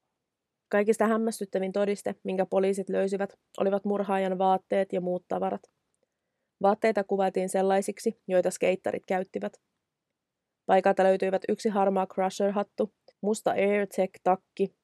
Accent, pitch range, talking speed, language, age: native, 185-205 Hz, 100 wpm, Finnish, 20-39